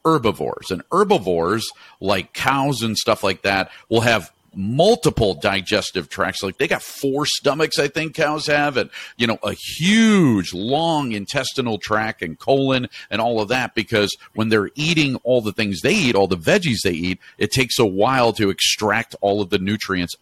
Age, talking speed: 50-69, 180 wpm